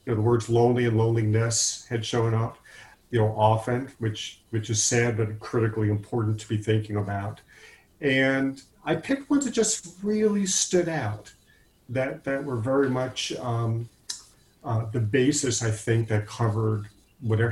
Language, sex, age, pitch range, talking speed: English, male, 40-59, 105-130 Hz, 160 wpm